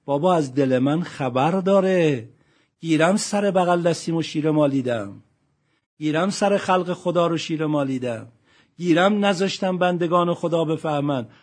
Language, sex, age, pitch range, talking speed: Persian, male, 50-69, 125-175 Hz, 125 wpm